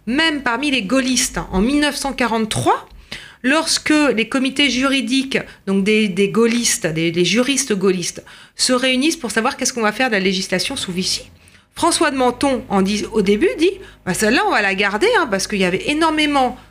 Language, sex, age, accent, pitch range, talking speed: French, female, 40-59, French, 195-295 Hz, 185 wpm